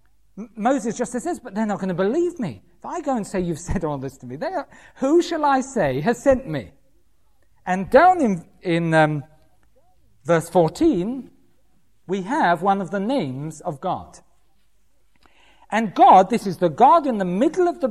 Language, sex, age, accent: English, male, 50-69, British